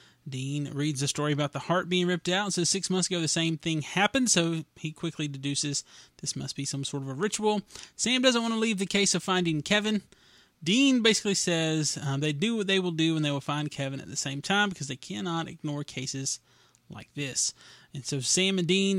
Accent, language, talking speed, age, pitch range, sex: American, English, 230 wpm, 30-49, 145-185 Hz, male